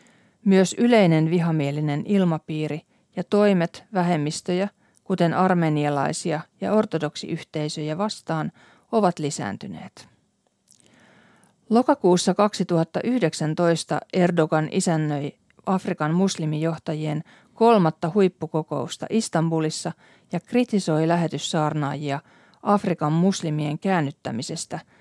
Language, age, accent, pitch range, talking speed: Finnish, 40-59, native, 155-195 Hz, 70 wpm